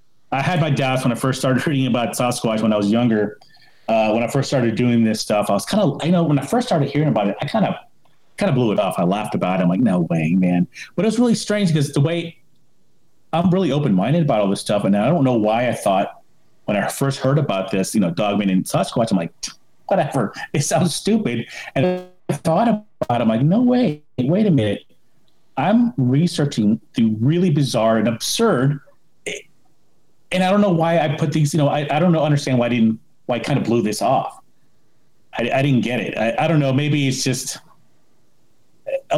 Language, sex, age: English, male, 30-49